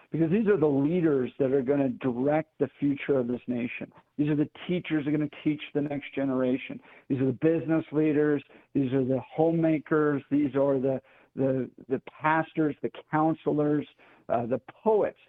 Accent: American